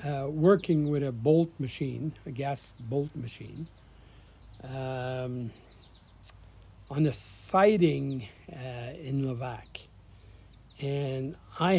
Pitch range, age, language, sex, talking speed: 95-145 Hz, 60-79, English, male, 95 wpm